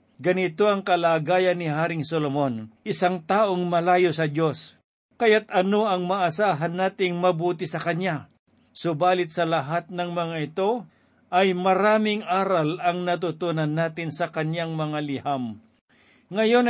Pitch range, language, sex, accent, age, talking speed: 165-190 Hz, Filipino, male, native, 50-69, 130 wpm